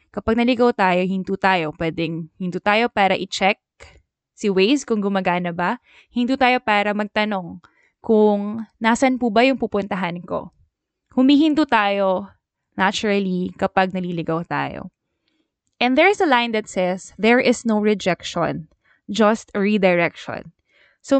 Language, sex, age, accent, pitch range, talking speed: English, female, 20-39, Filipino, 180-240 Hz, 135 wpm